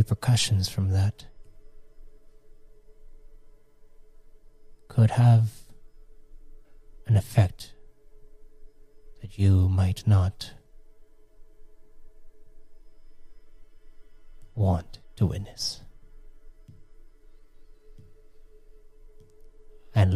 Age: 40-59